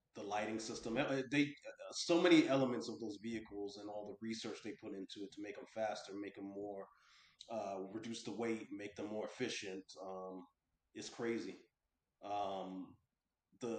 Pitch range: 95-115 Hz